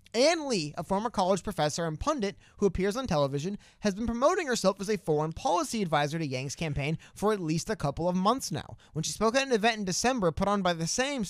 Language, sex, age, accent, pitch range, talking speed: English, male, 30-49, American, 155-220 Hz, 240 wpm